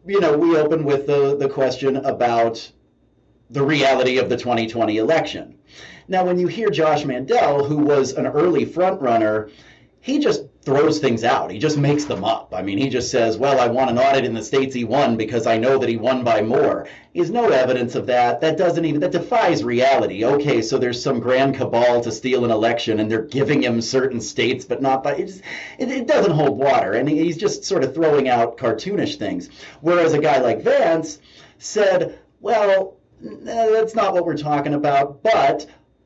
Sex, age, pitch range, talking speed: male, 30-49, 130-170 Hz, 200 wpm